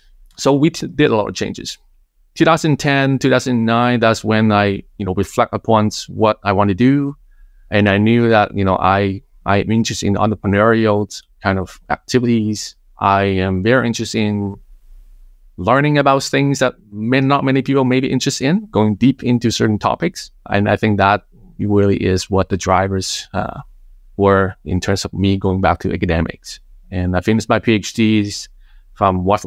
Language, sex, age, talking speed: English, male, 20-39, 175 wpm